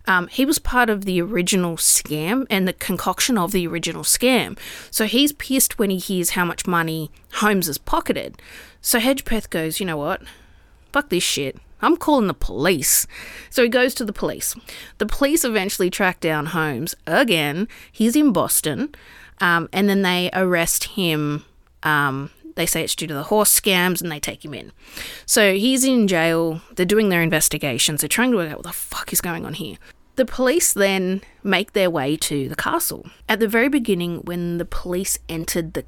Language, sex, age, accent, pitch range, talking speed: English, female, 30-49, Australian, 170-230 Hz, 190 wpm